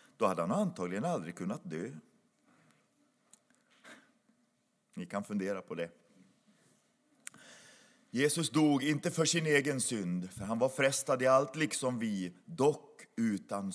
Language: Swedish